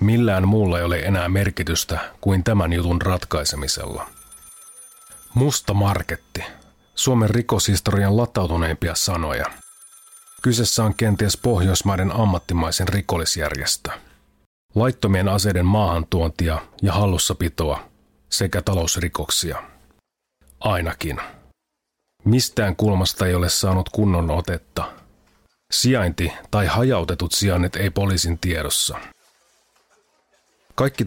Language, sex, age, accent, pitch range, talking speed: Finnish, male, 30-49, native, 85-105 Hz, 85 wpm